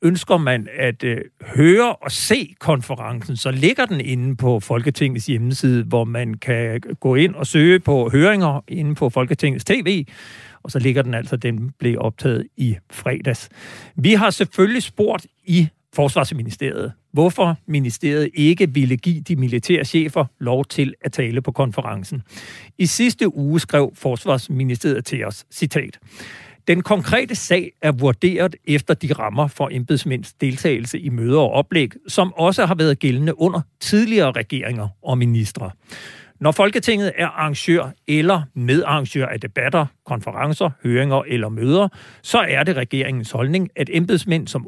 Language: Danish